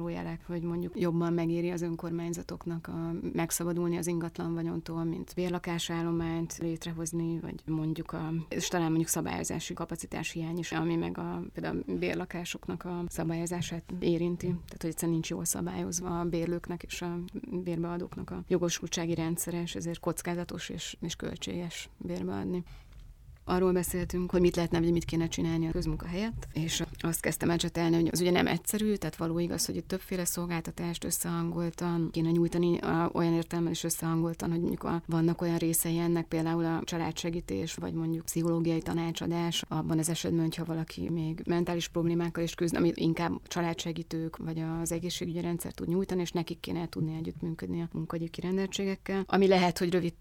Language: Hungarian